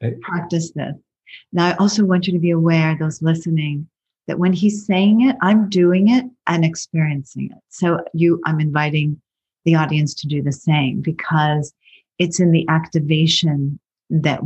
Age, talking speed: 40-59, 160 wpm